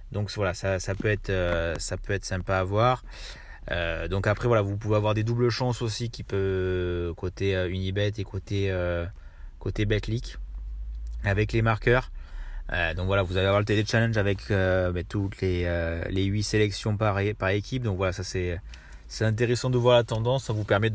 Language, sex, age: French, male, 30-49